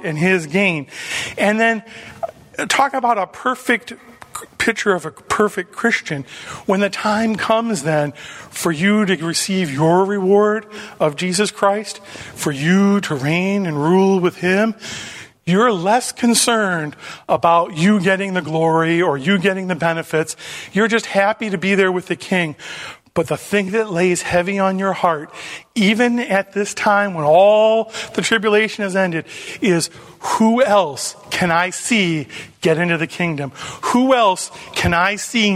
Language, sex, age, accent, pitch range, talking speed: English, male, 40-59, American, 165-205 Hz, 155 wpm